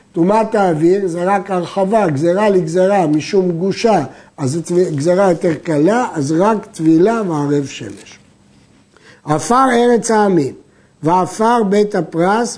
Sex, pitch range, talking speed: male, 160-205 Hz, 120 wpm